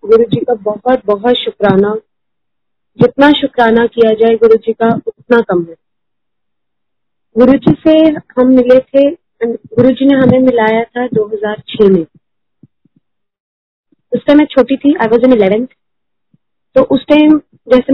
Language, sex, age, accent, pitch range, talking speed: Hindi, female, 20-39, native, 210-255 Hz, 125 wpm